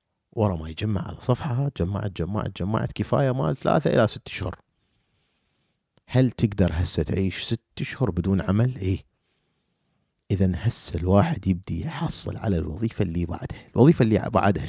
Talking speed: 145 wpm